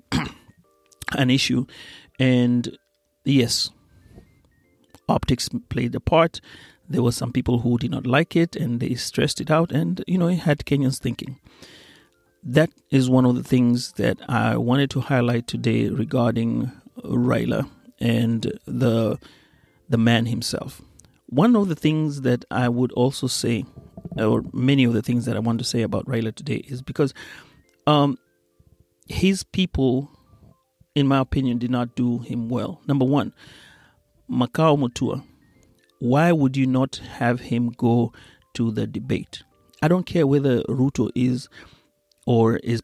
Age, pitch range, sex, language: 40-59, 120-140 Hz, male, Swahili